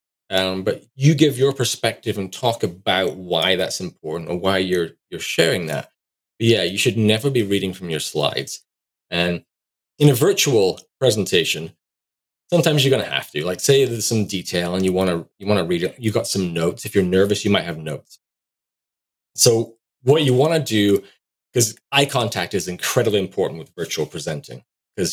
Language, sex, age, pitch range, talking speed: English, male, 30-49, 90-125 Hz, 190 wpm